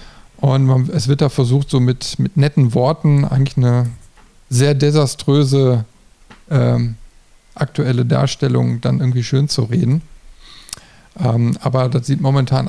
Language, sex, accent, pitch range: German, male, German, 120-150 Hz